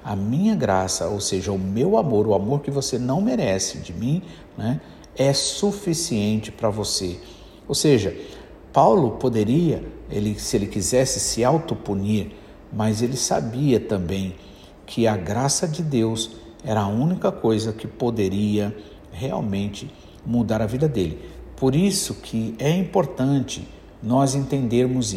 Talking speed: 135 wpm